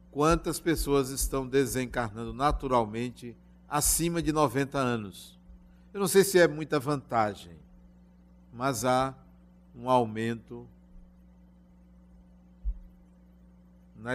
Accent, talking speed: Brazilian, 90 wpm